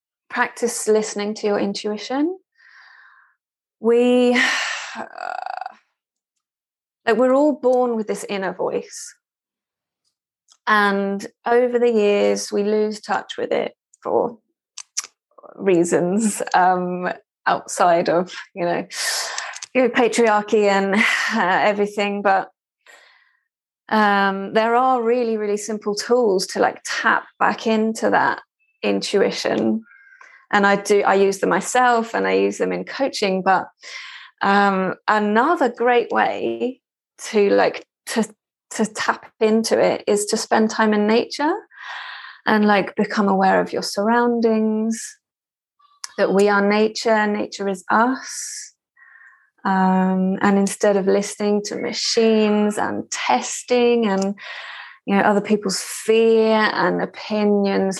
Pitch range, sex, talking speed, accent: 200-245 Hz, female, 115 wpm, British